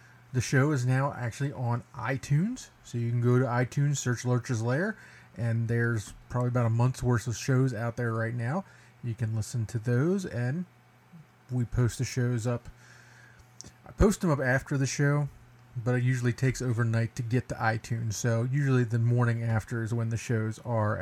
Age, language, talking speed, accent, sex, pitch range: 30-49, English, 190 wpm, American, male, 115-130 Hz